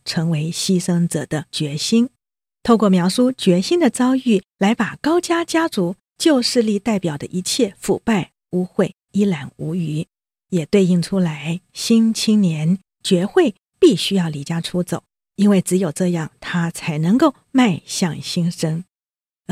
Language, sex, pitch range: Chinese, female, 160-205 Hz